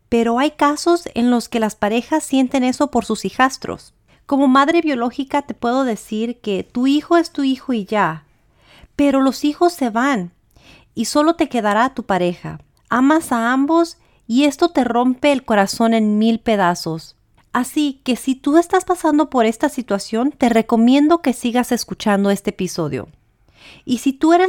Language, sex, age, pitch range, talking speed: Spanish, female, 40-59, 210-285 Hz, 170 wpm